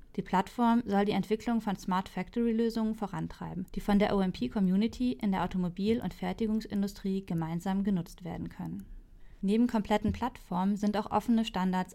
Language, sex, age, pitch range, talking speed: German, female, 30-49, 185-210 Hz, 145 wpm